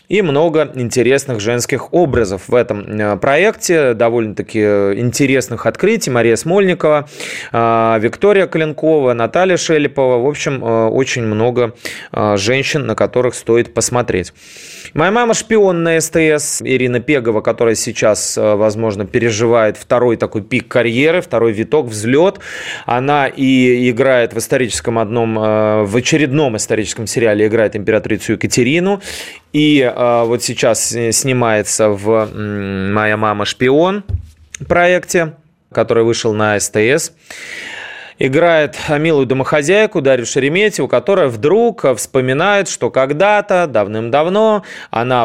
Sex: male